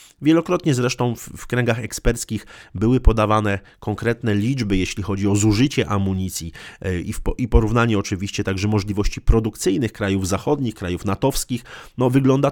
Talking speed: 125 wpm